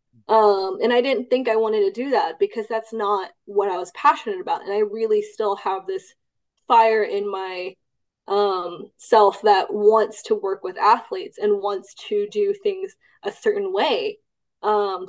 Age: 20-39